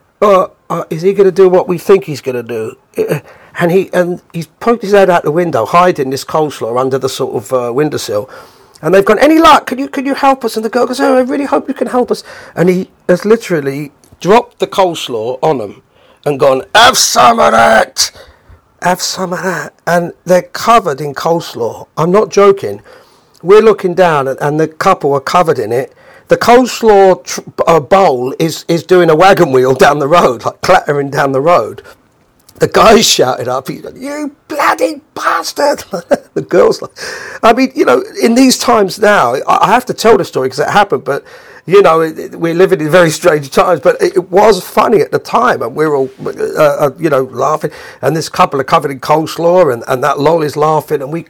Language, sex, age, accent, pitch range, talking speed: English, male, 40-59, British, 160-255 Hz, 215 wpm